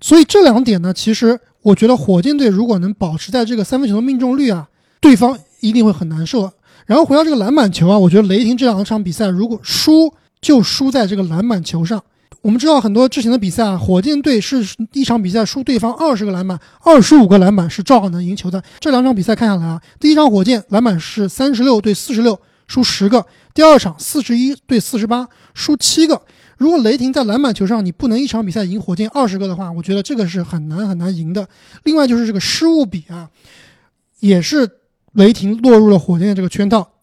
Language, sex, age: Chinese, male, 20-39